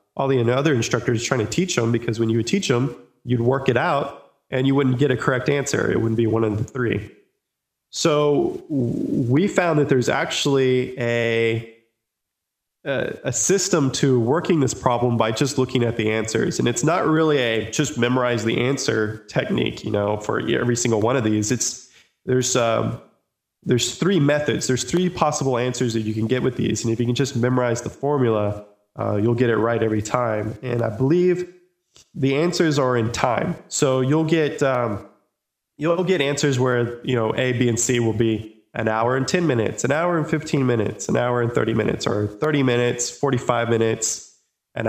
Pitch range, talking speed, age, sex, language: 115-140 Hz, 195 wpm, 20-39, male, English